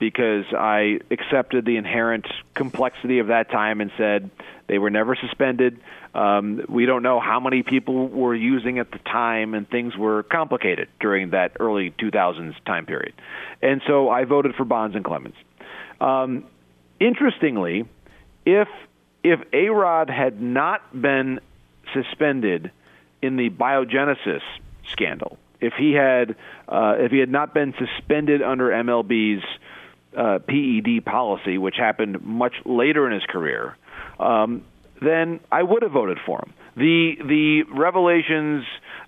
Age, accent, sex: 40-59, American, male